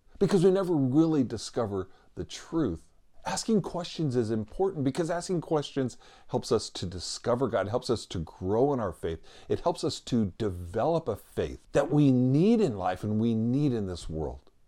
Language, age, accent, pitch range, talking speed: English, 50-69, American, 110-170 Hz, 180 wpm